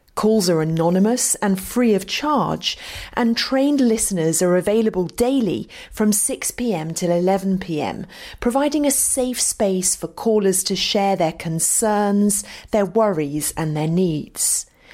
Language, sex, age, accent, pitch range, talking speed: English, female, 30-49, British, 175-235 Hz, 130 wpm